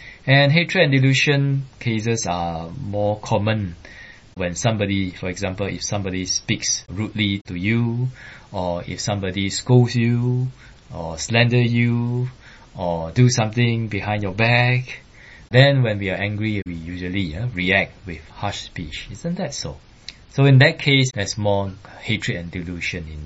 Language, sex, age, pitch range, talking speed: English, male, 20-39, 90-125 Hz, 145 wpm